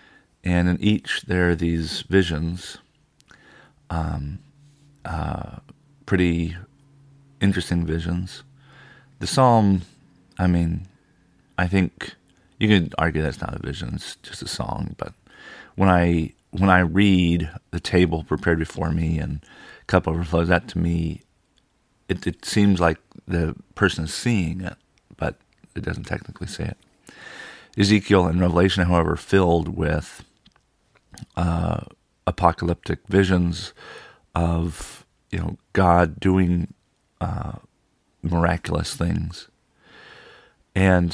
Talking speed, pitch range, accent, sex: 115 wpm, 85-95 Hz, American, male